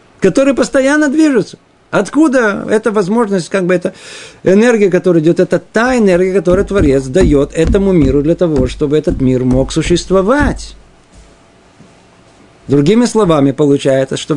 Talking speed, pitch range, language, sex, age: 130 wpm, 140-200 Hz, Russian, male, 50-69